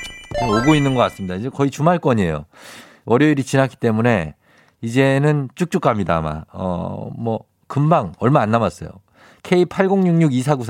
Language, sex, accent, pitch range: Korean, male, native, 110-170 Hz